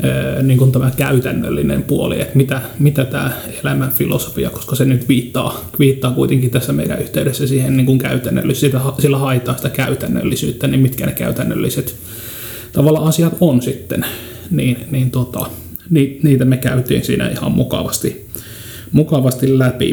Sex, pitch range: male, 120-135 Hz